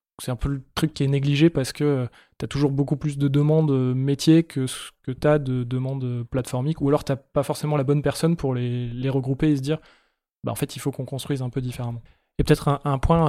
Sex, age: male, 20-39